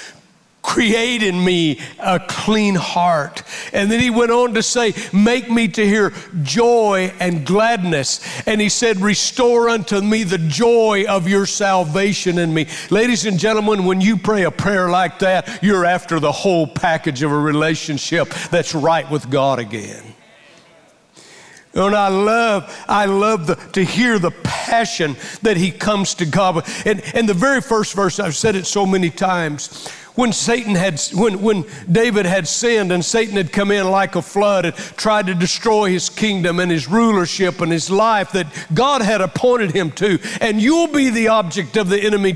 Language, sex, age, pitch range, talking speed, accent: English, male, 60-79, 170-215 Hz, 175 wpm, American